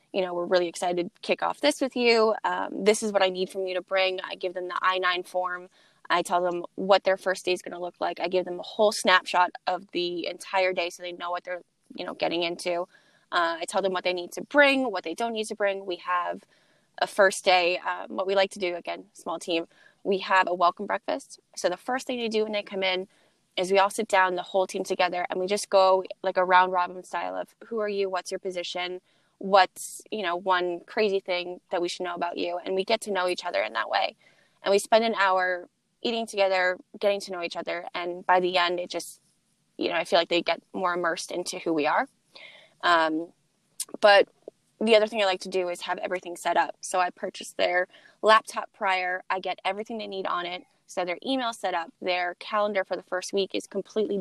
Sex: female